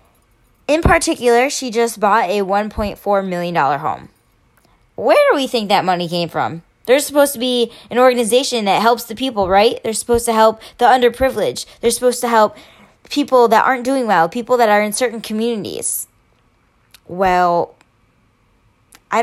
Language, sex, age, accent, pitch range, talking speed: English, female, 10-29, American, 175-235 Hz, 160 wpm